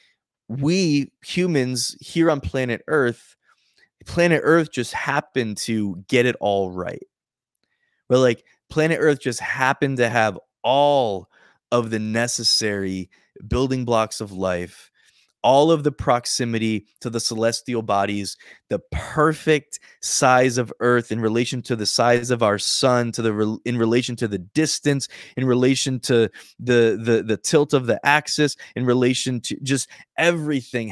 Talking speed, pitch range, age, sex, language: 145 wpm, 115-135 Hz, 20-39, male, English